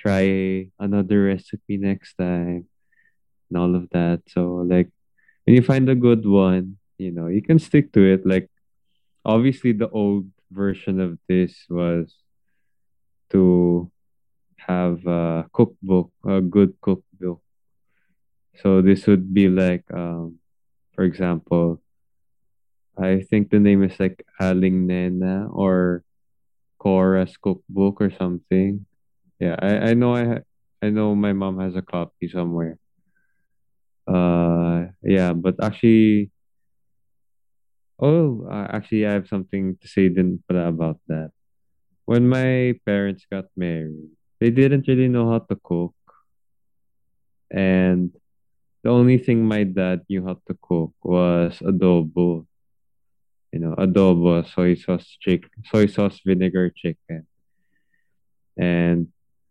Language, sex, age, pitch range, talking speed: English, male, 20-39, 90-100 Hz, 125 wpm